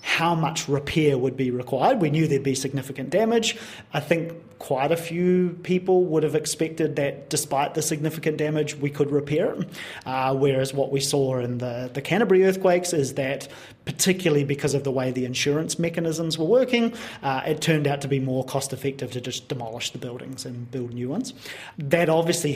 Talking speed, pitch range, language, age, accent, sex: 185 wpm, 130-160 Hz, English, 30-49, Australian, male